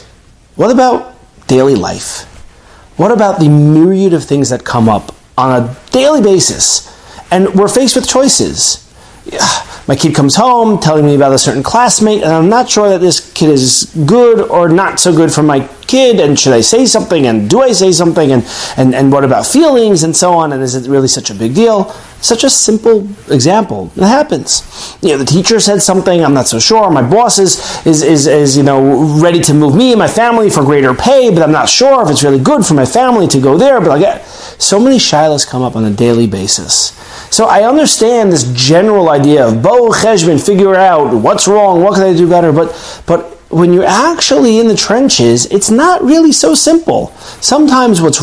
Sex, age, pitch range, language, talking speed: male, 30-49, 140-215 Hz, English, 210 wpm